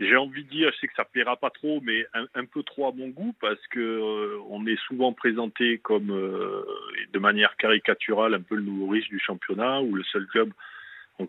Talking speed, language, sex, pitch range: 235 wpm, French, male, 110-160 Hz